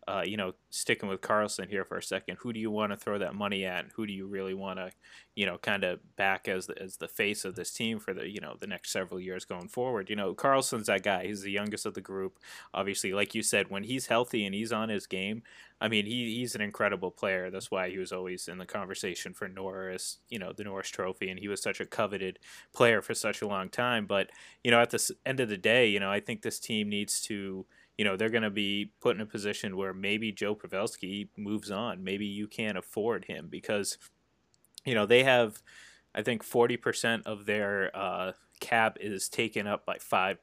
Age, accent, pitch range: 20-39, American, 95-110 Hz